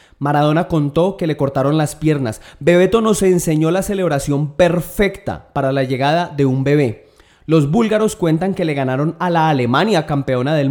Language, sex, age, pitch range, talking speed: Spanish, male, 30-49, 140-180 Hz, 170 wpm